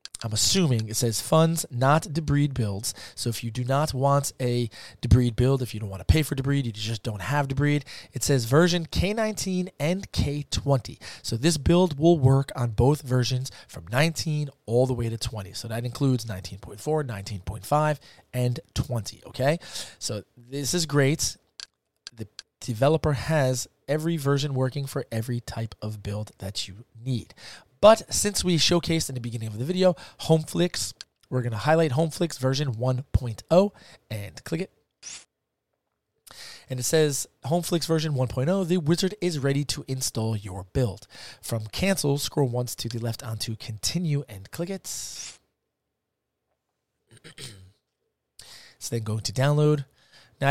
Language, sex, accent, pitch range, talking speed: English, male, American, 115-150 Hz, 155 wpm